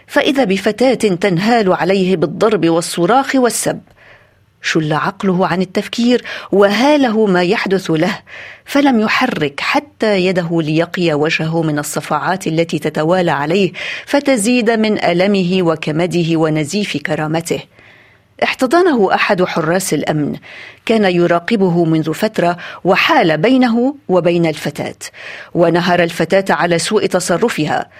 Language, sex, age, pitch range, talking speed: Arabic, female, 40-59, 170-230 Hz, 105 wpm